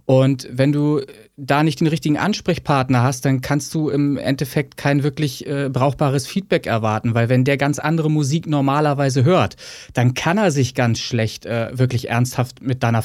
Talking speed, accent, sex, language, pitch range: 180 wpm, German, male, German, 135-170 Hz